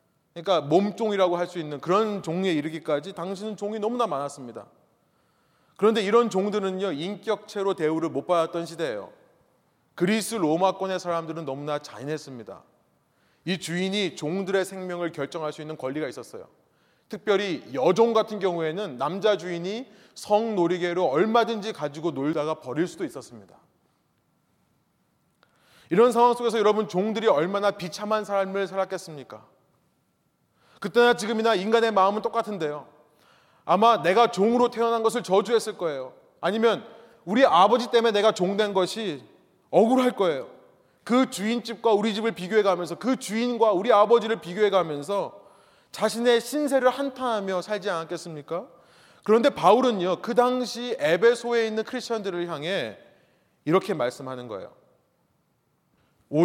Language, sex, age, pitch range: Korean, male, 30-49, 170-225 Hz